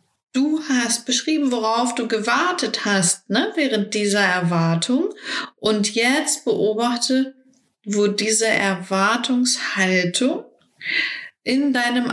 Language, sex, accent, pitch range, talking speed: German, female, German, 190-260 Hz, 95 wpm